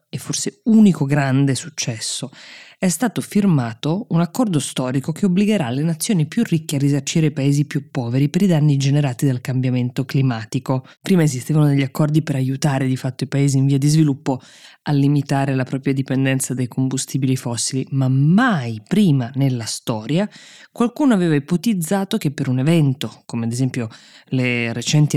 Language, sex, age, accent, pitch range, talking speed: Italian, female, 20-39, native, 130-170 Hz, 165 wpm